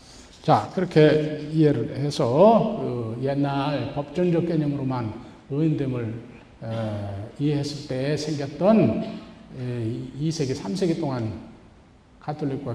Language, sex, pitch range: Korean, male, 135-175 Hz